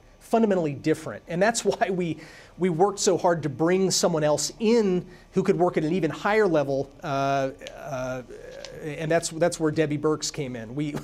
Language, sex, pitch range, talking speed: English, male, 145-185 Hz, 185 wpm